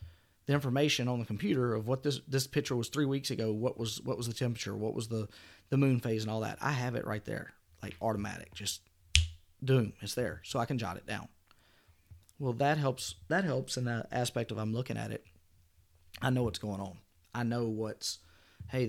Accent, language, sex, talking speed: American, English, male, 215 wpm